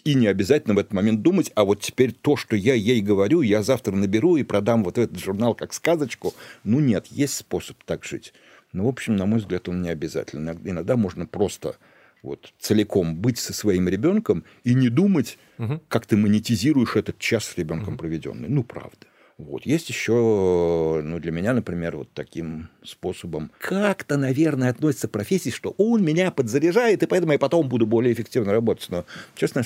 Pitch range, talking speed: 95-150 Hz, 180 wpm